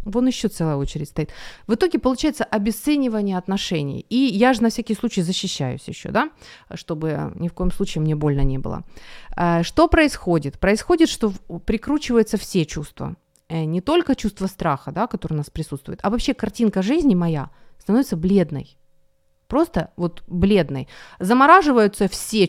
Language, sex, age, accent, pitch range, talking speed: Ukrainian, female, 30-49, native, 170-230 Hz, 145 wpm